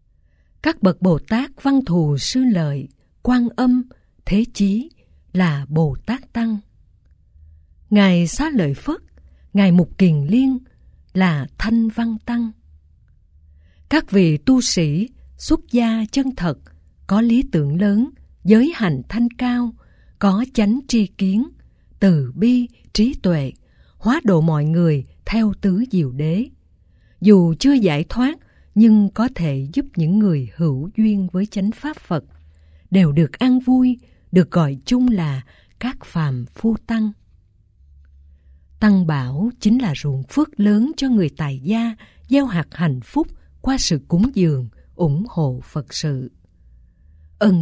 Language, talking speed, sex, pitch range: Vietnamese, 140 wpm, female, 145-225 Hz